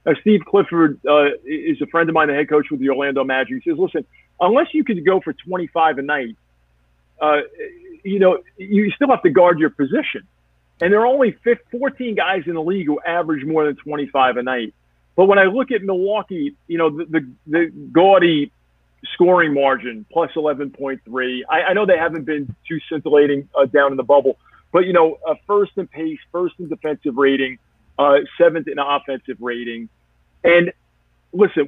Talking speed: 190 wpm